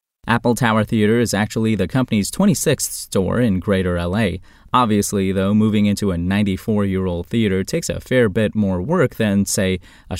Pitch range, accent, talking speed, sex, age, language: 95-130 Hz, American, 165 wpm, male, 30-49, English